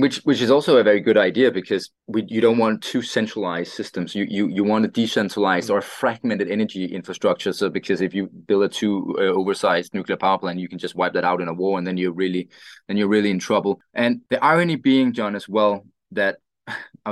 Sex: male